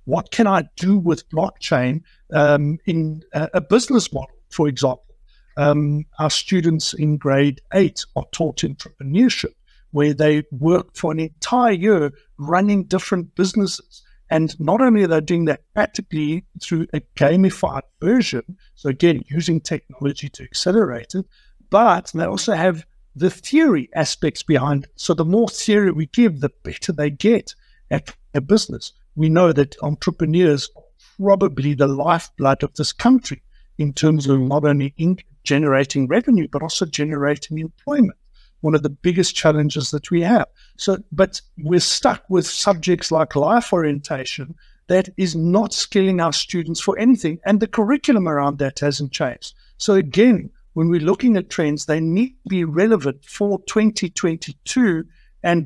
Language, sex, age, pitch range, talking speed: English, male, 60-79, 150-195 Hz, 155 wpm